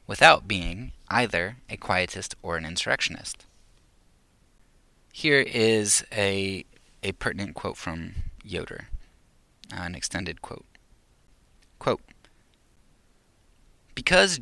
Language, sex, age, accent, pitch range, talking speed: English, male, 20-39, American, 90-120 Hz, 90 wpm